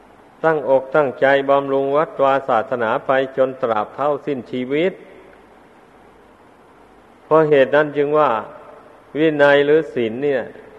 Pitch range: 130-150 Hz